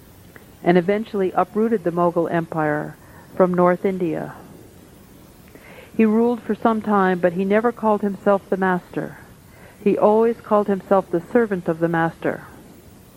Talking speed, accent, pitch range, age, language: 135 wpm, American, 180-215 Hz, 50-69, English